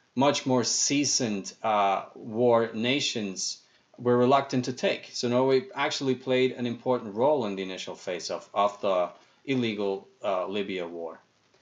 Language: English